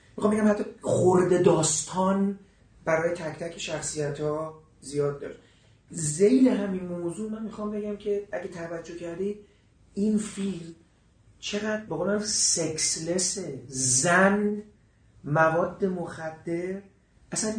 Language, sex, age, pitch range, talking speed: Persian, male, 40-59, 140-190 Hz, 100 wpm